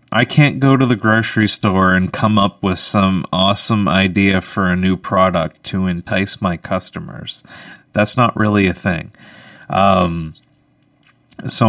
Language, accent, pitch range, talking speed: English, American, 95-115 Hz, 150 wpm